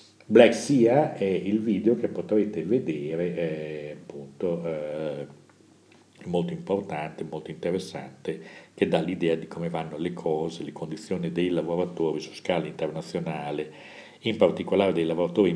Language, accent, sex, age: Italian, native, male, 50-69